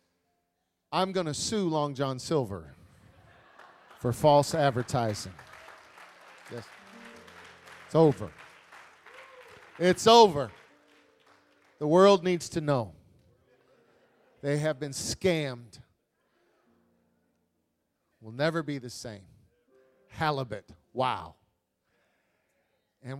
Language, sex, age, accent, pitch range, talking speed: English, male, 40-59, American, 125-190 Hz, 85 wpm